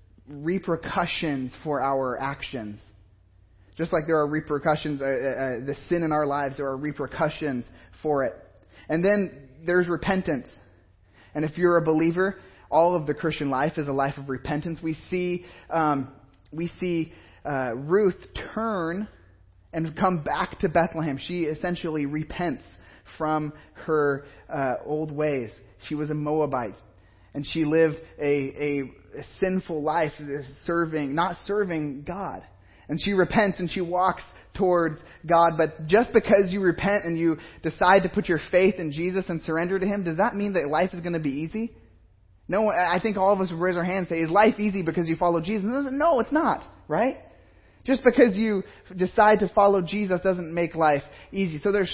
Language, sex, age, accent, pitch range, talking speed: English, male, 20-39, American, 145-185 Hz, 170 wpm